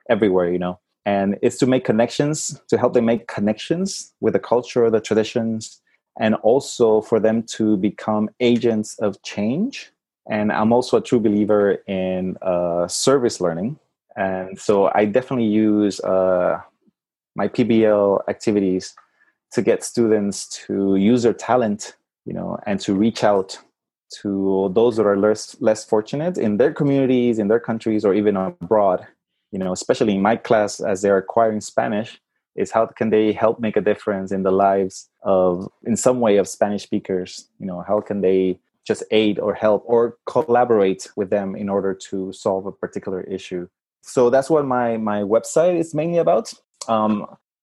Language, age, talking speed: English, 30-49, 170 wpm